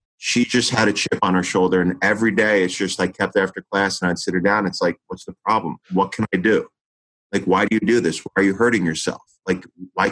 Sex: male